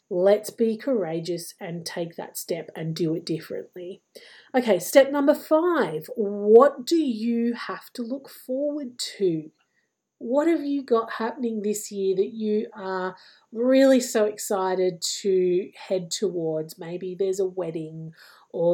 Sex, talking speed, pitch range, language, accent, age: female, 140 wpm, 185-230 Hz, English, Australian, 30-49